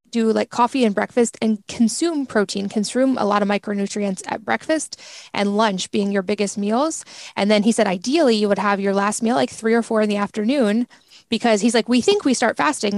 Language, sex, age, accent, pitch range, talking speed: English, female, 20-39, American, 205-235 Hz, 215 wpm